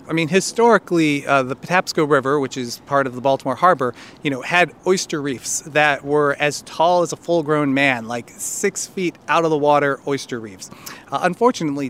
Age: 30-49